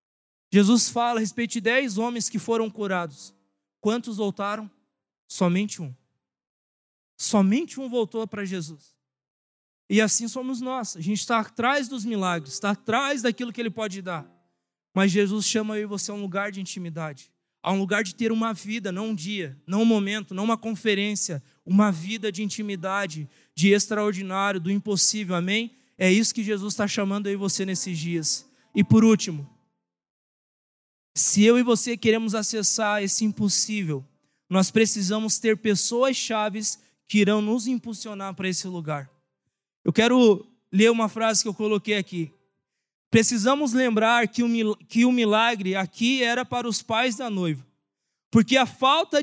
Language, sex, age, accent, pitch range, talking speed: Portuguese, male, 20-39, Brazilian, 190-230 Hz, 155 wpm